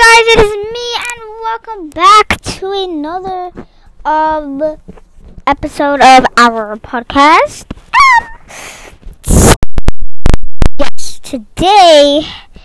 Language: English